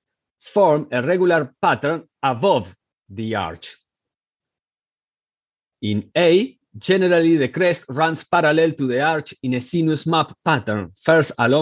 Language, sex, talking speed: English, male, 115 wpm